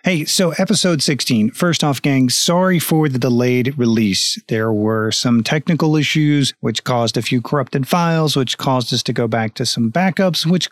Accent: American